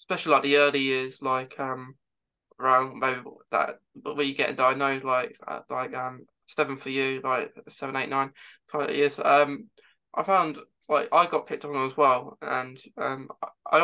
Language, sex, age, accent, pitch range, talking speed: English, male, 20-39, British, 135-155 Hz, 180 wpm